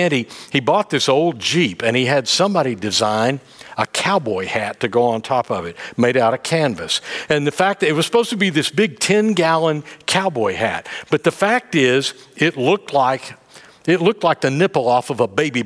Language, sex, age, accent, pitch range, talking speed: English, male, 50-69, American, 130-180 Hz, 210 wpm